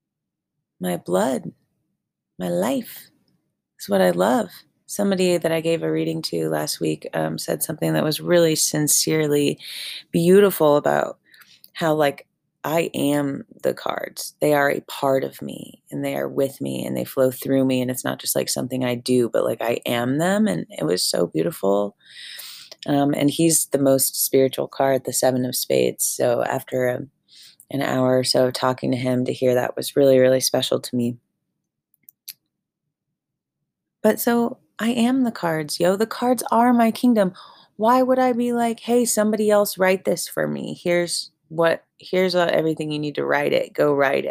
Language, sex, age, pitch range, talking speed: English, female, 30-49, 130-210 Hz, 180 wpm